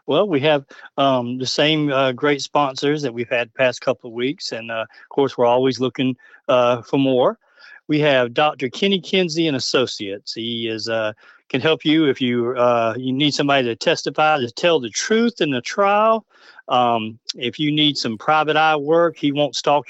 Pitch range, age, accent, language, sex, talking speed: 125-160 Hz, 40-59, American, English, male, 200 wpm